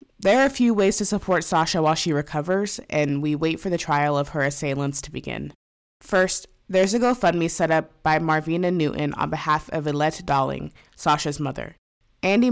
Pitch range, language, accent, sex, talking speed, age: 150-190 Hz, English, American, female, 185 wpm, 20-39